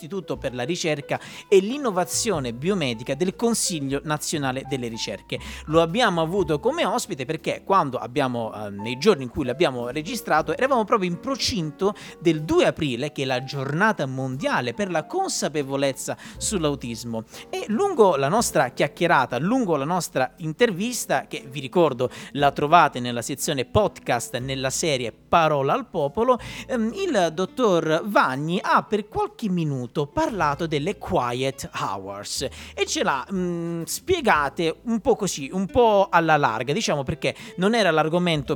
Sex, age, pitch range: male, 40-59, 135-195 Hz